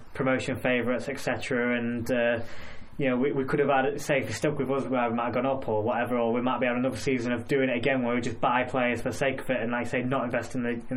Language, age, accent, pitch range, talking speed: English, 20-39, British, 125-150 Hz, 305 wpm